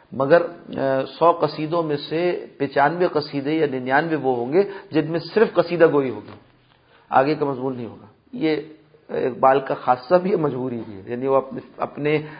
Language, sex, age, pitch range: Persian, male, 40-59, 135-155 Hz